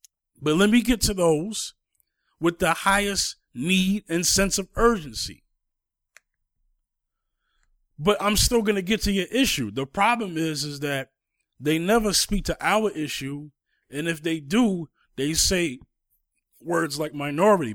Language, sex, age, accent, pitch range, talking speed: English, male, 30-49, American, 145-200 Hz, 145 wpm